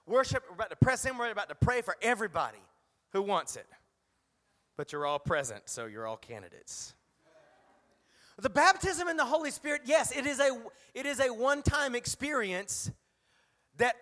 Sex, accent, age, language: male, American, 30-49, English